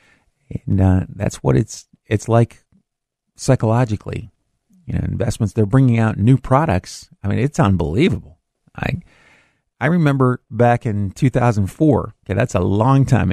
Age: 50-69